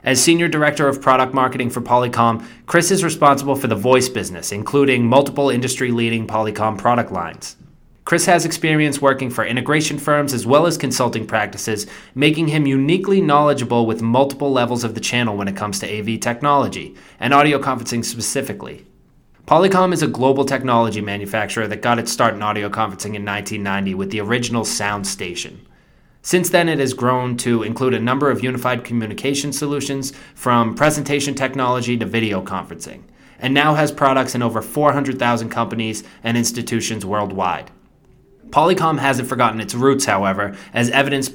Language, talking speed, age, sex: English, 160 wpm, 20-39, male